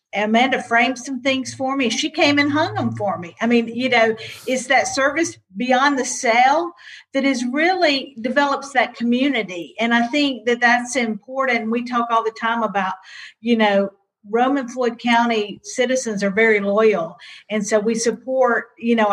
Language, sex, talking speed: English, female, 175 wpm